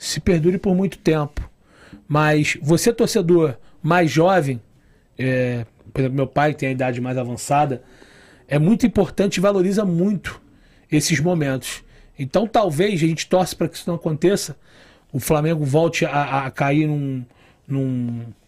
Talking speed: 145 wpm